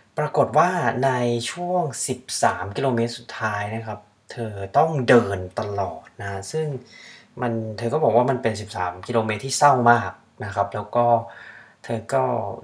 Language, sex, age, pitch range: Thai, male, 20-39, 105-125 Hz